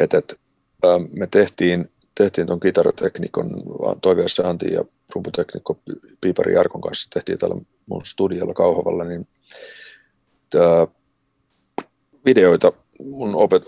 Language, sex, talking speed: Finnish, male, 110 wpm